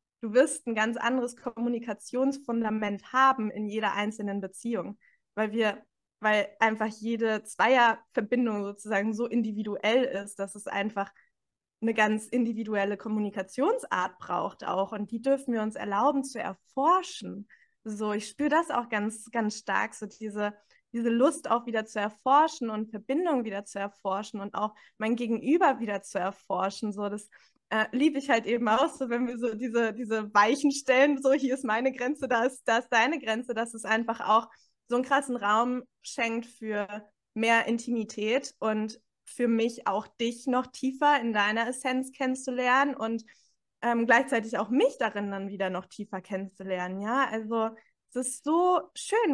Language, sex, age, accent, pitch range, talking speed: German, female, 20-39, German, 215-255 Hz, 160 wpm